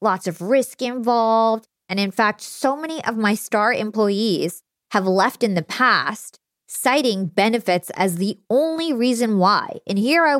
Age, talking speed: 20-39, 160 wpm